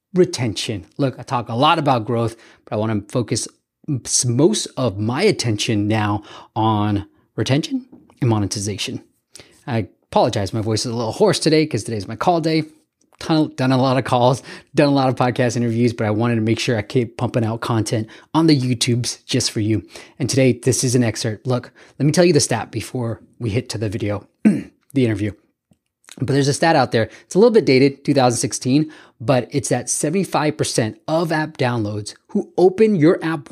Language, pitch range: English, 115-150 Hz